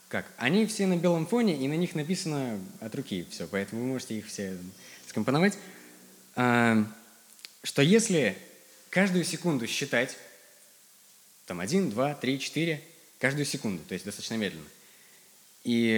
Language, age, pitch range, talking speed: Russian, 20-39, 125-190 Hz, 130 wpm